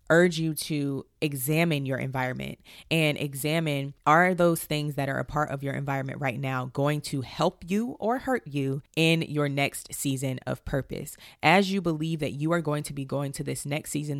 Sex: female